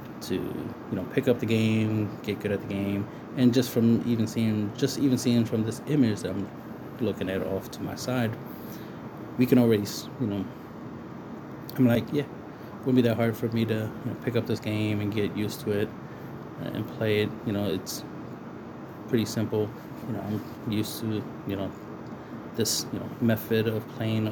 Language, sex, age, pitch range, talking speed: English, male, 20-39, 100-115 Hz, 195 wpm